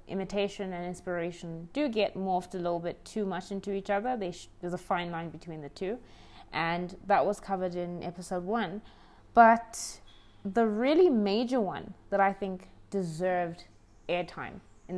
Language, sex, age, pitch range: English, female, 20-39, 165-210 Hz